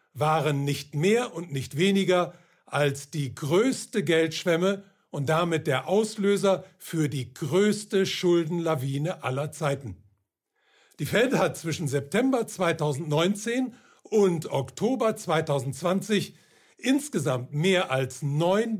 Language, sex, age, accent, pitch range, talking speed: German, male, 60-79, German, 145-195 Hz, 105 wpm